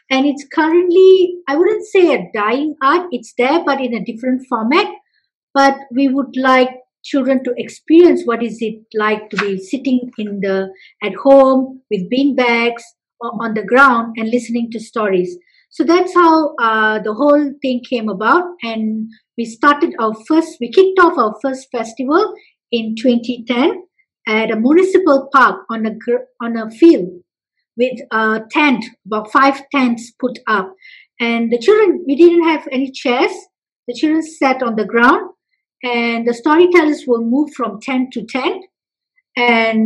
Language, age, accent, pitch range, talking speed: English, 50-69, Indian, 225-300 Hz, 165 wpm